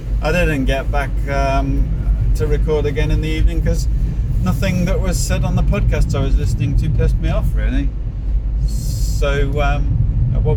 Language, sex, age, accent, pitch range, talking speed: English, male, 30-49, British, 110-135 Hz, 170 wpm